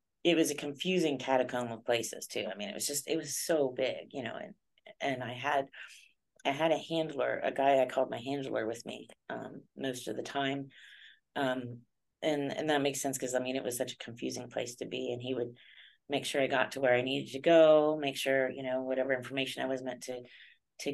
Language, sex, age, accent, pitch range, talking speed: English, female, 30-49, American, 130-145 Hz, 230 wpm